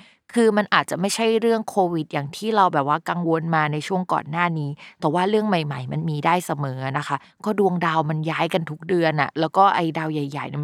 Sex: female